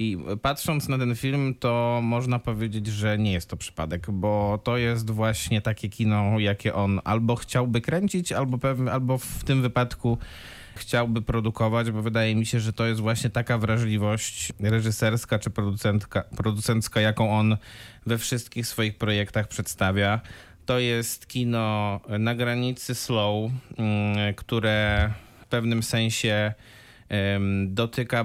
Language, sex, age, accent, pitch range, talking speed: Polish, male, 20-39, native, 110-125 Hz, 135 wpm